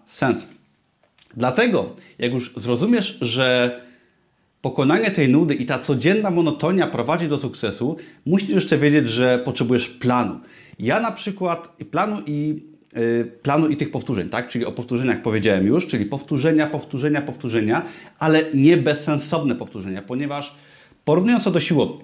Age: 30-49